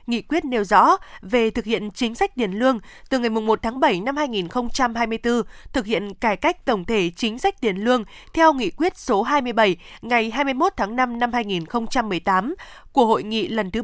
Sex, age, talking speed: female, 20-39, 190 wpm